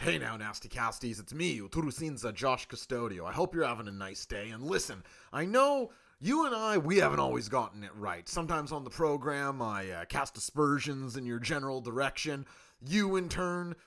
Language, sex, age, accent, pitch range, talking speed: English, male, 30-49, American, 105-170 Hz, 190 wpm